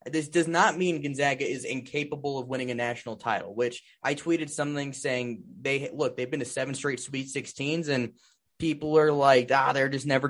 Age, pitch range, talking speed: 20-39, 130-170 Hz, 200 wpm